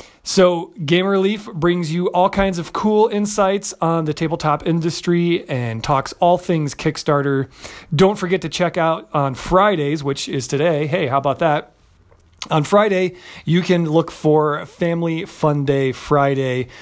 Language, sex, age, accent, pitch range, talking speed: English, male, 40-59, American, 140-180 Hz, 155 wpm